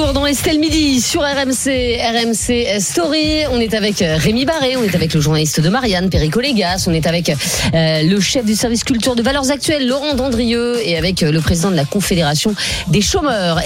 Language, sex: French, female